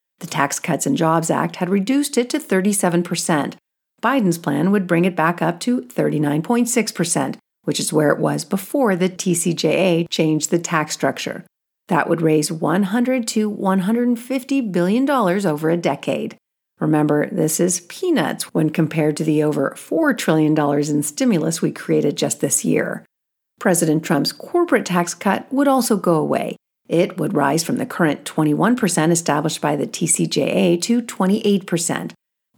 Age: 50-69